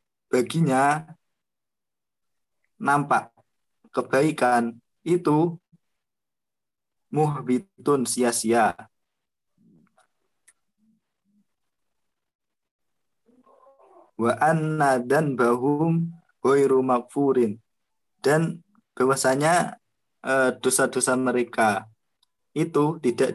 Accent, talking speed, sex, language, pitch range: native, 45 wpm, male, Indonesian, 125-155 Hz